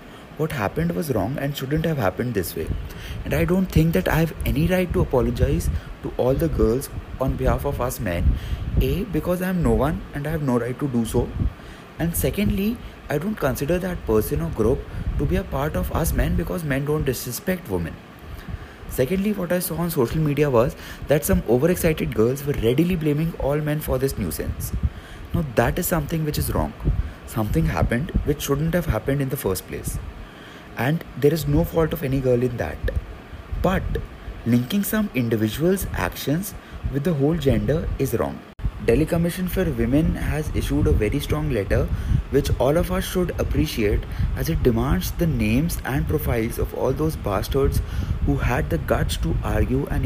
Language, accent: Hindi, native